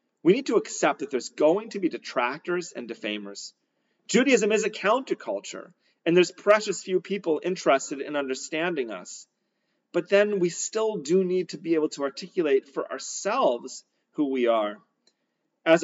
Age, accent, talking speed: 40-59, American, 160 wpm